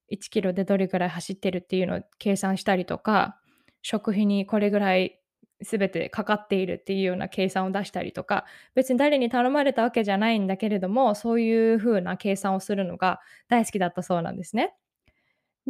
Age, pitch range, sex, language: 20-39, 195-245 Hz, female, Japanese